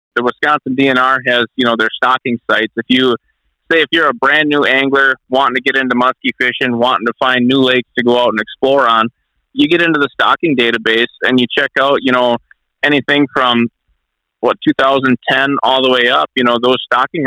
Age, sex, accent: 30-49, male, American